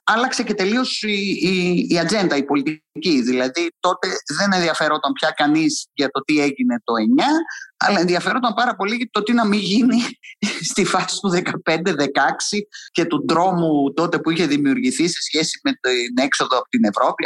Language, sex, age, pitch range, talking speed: Greek, male, 30-49, 160-270 Hz, 175 wpm